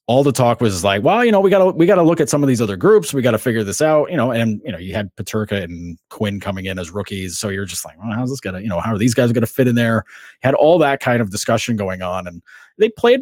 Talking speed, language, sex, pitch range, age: 320 wpm, English, male, 100-130 Hz, 30-49